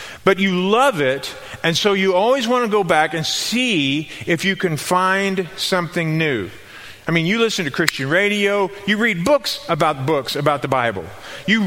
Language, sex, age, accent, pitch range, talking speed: English, male, 40-59, American, 155-200 Hz, 185 wpm